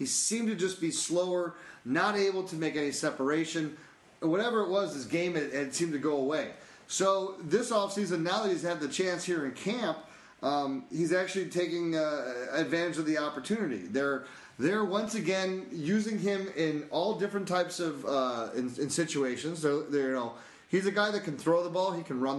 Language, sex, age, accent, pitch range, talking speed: English, male, 30-49, American, 150-195 Hz, 200 wpm